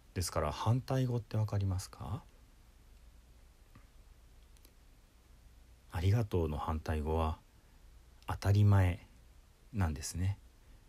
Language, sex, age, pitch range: Japanese, male, 40-59, 75-100 Hz